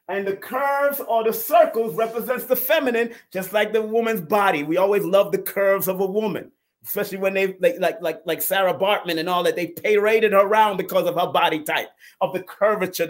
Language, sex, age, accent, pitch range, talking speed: English, male, 30-49, American, 190-255 Hz, 205 wpm